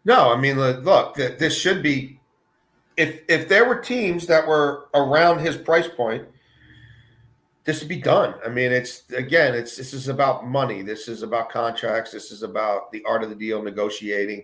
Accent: American